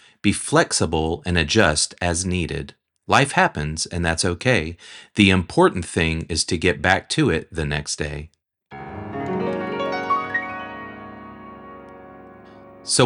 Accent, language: American, English